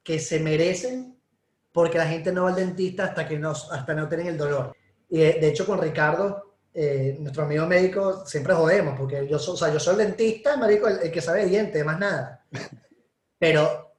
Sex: male